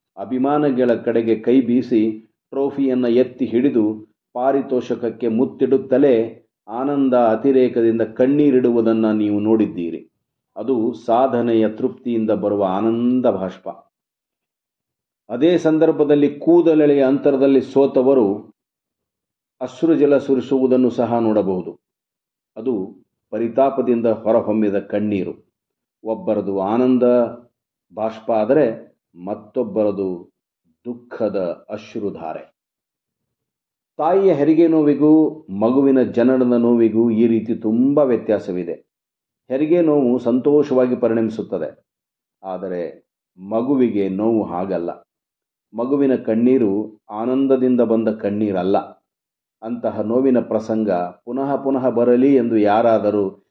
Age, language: 40-59, Kannada